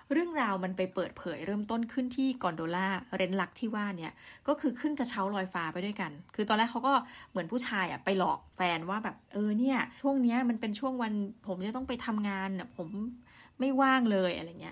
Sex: female